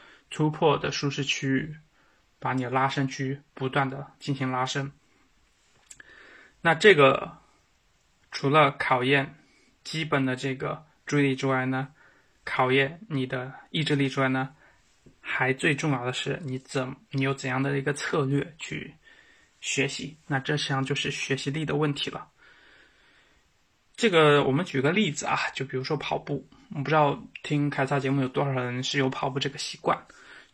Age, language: 20-39, Chinese